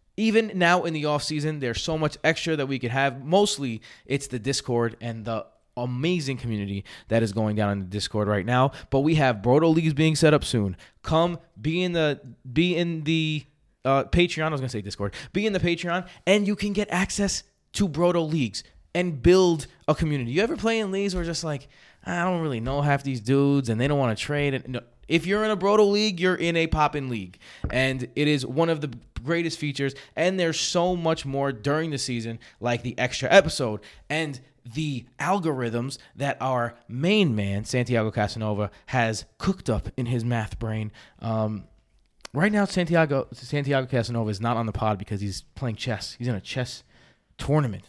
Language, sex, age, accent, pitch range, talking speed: English, male, 20-39, American, 115-165 Hz, 200 wpm